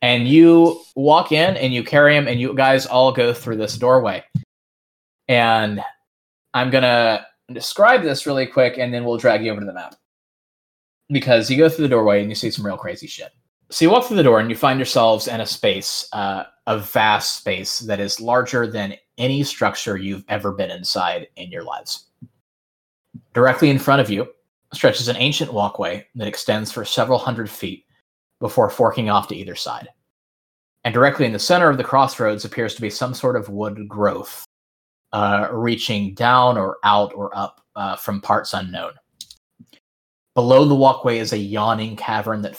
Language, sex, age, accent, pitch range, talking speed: English, male, 20-39, American, 100-130 Hz, 185 wpm